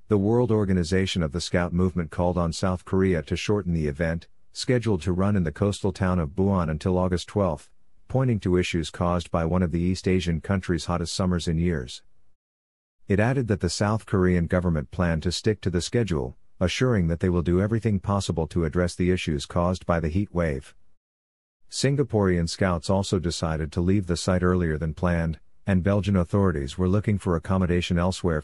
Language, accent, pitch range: English, American, 85-100 Hz